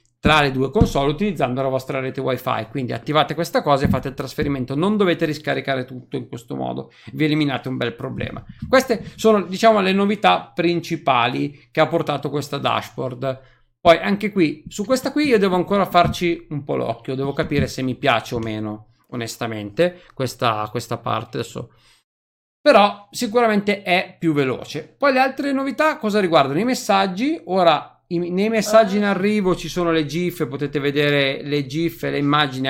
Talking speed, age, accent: 175 wpm, 40-59, native